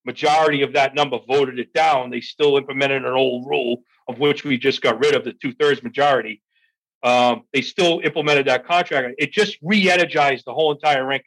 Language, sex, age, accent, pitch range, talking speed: English, male, 40-59, American, 140-190 Hz, 190 wpm